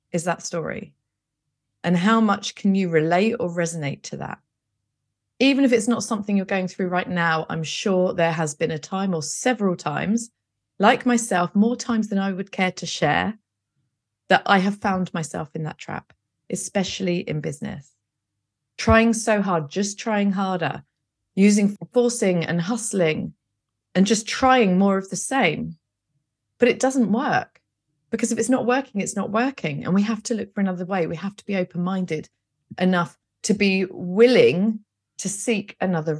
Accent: British